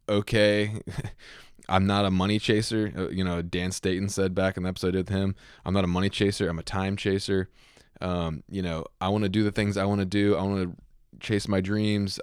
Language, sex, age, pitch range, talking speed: English, male, 20-39, 90-105 Hz, 220 wpm